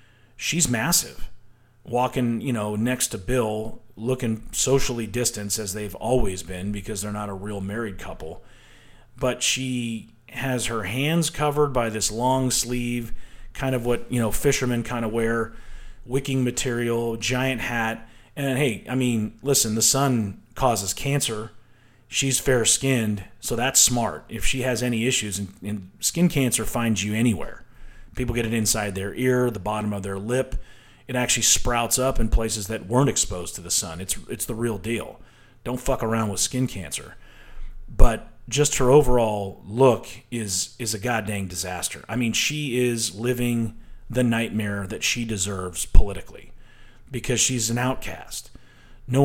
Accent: American